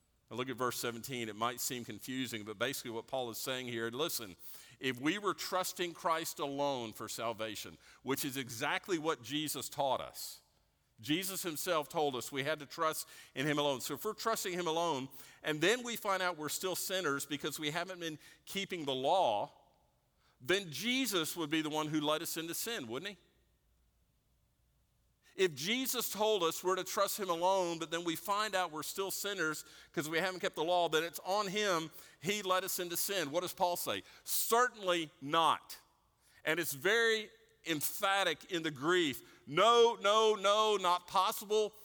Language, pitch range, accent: English, 140-185 Hz, American